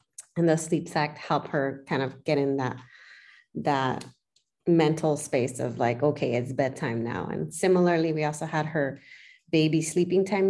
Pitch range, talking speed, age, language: 145-185 Hz, 165 wpm, 30-49, English